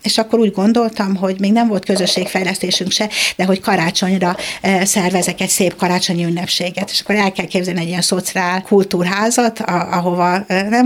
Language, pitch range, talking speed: Hungarian, 175-195 Hz, 165 wpm